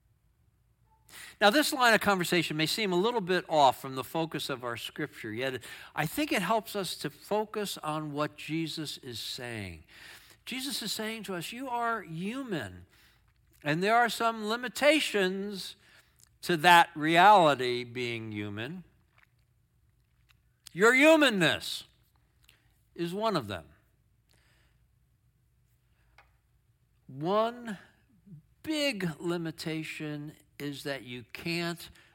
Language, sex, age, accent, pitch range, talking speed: English, male, 60-79, American, 135-205 Hz, 115 wpm